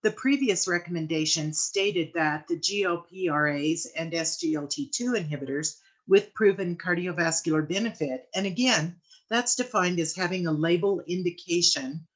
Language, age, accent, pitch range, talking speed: English, 50-69, American, 155-195 Hz, 115 wpm